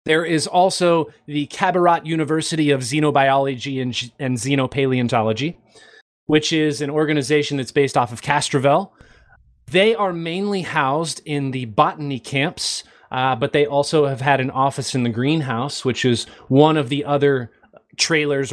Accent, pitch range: American, 130-165 Hz